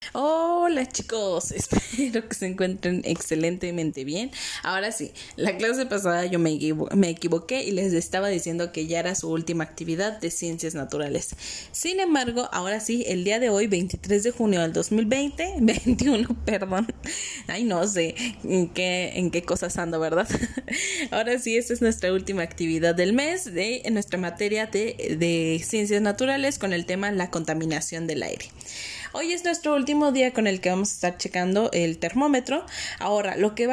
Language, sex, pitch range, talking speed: Spanish, female, 180-245 Hz, 170 wpm